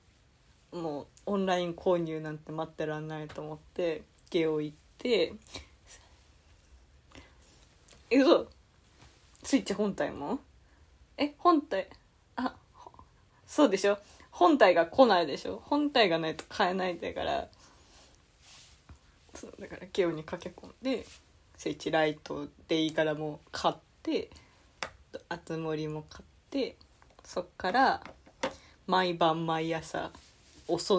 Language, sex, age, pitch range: Japanese, female, 20-39, 155-210 Hz